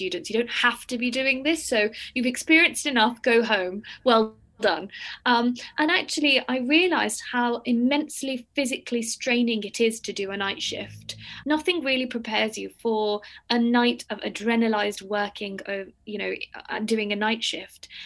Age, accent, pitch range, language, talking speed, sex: 20-39, British, 210-245 Hz, English, 165 wpm, female